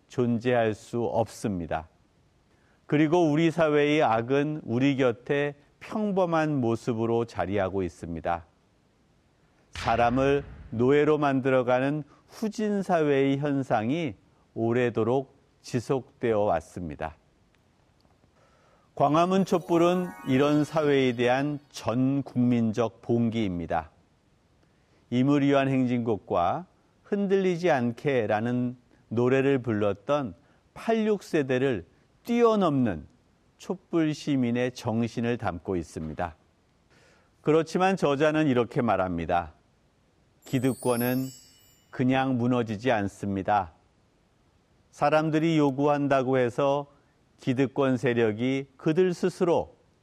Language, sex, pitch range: Korean, male, 115-145 Hz